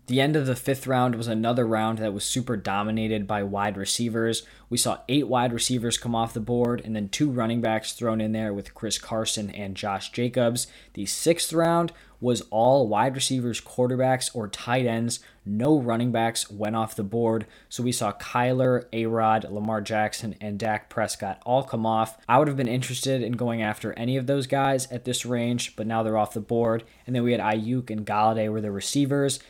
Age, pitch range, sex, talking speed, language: 20-39, 110-130 Hz, male, 205 wpm, English